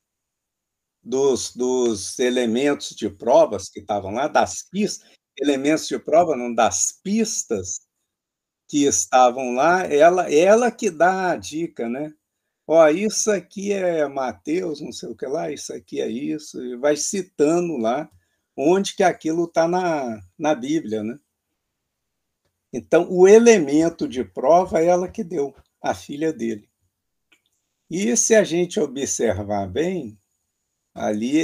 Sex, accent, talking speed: male, Brazilian, 130 wpm